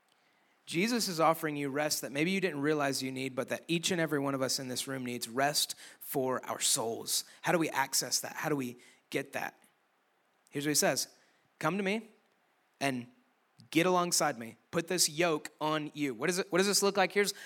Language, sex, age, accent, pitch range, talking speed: English, male, 30-49, American, 150-200 Hz, 215 wpm